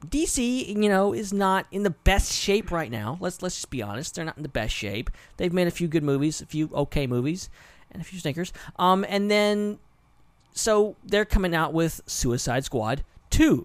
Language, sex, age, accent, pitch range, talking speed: English, male, 40-59, American, 120-170 Hz, 205 wpm